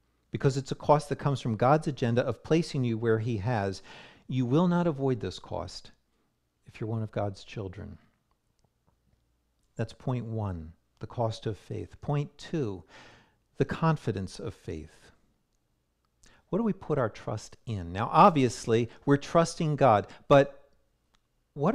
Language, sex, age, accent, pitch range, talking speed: English, male, 50-69, American, 110-150 Hz, 150 wpm